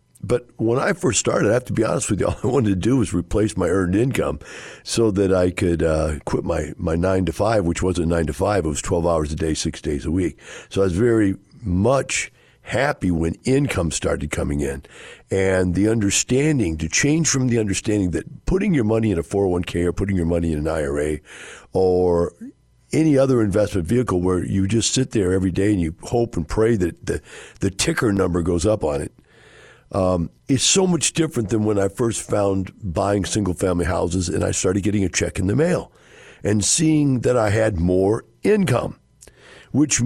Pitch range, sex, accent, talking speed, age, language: 85-115 Hz, male, American, 205 wpm, 50-69, English